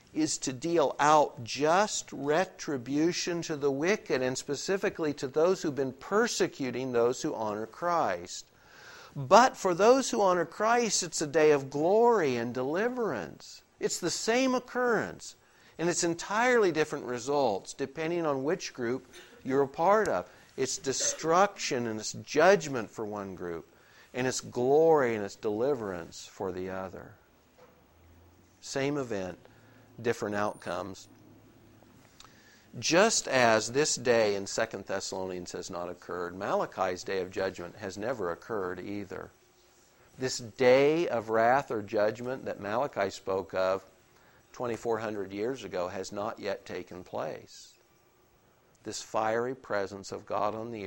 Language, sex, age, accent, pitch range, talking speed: English, male, 60-79, American, 105-160 Hz, 135 wpm